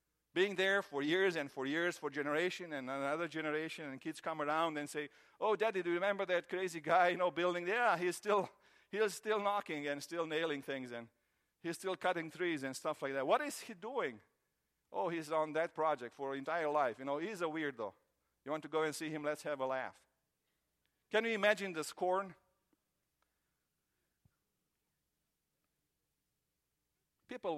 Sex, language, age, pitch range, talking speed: male, English, 50-69, 135-200 Hz, 180 wpm